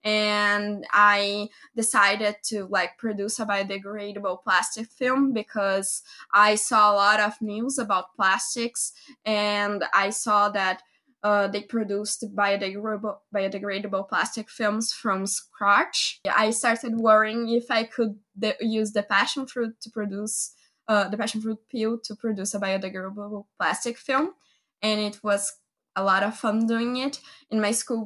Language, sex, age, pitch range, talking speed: English, female, 10-29, 195-225 Hz, 145 wpm